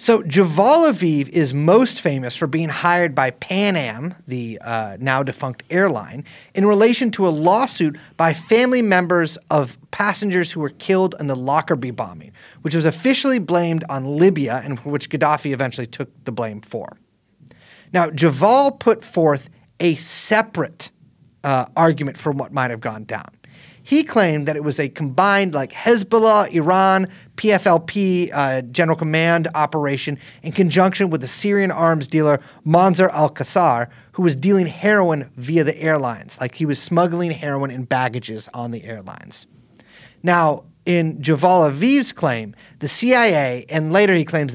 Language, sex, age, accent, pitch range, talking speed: English, male, 30-49, American, 140-185 Hz, 155 wpm